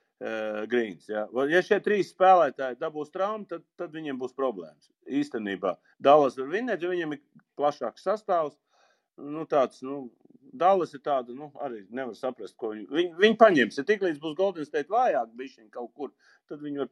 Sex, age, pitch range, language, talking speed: male, 50-69, 125-175 Hz, English, 165 wpm